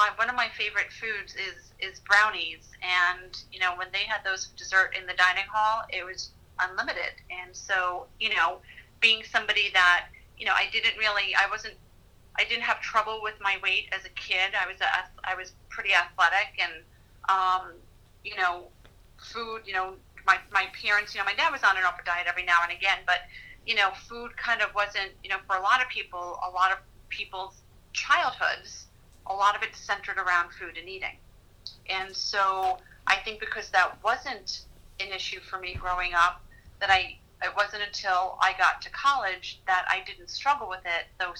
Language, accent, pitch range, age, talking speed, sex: English, American, 180-210 Hz, 30-49, 195 wpm, female